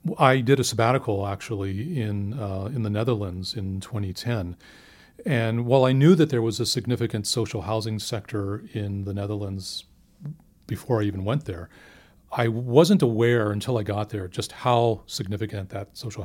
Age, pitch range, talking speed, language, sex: 40-59, 100-130 Hz, 165 wpm, English, male